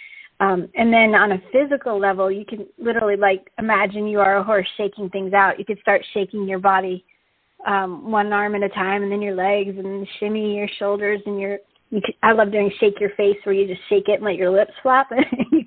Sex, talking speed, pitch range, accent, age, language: female, 220 wpm, 195-225 Hz, American, 40-59, English